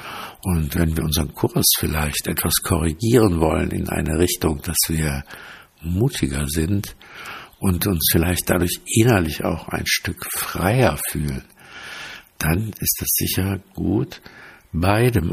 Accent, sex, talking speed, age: German, male, 125 wpm, 60-79